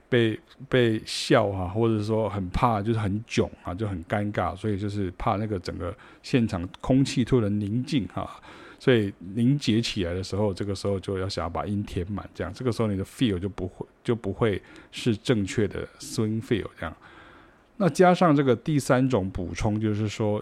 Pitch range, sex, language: 100-125 Hz, male, Chinese